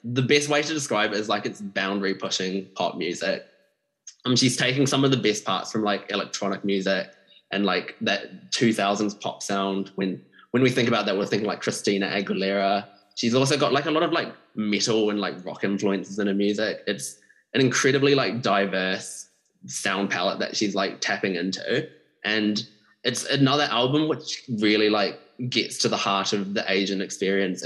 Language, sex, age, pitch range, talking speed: English, male, 20-39, 100-120 Hz, 180 wpm